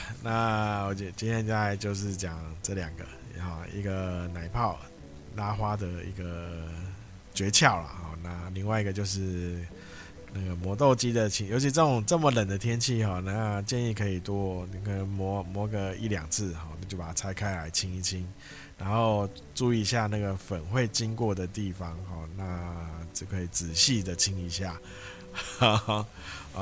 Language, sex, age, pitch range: Chinese, male, 20-39, 90-115 Hz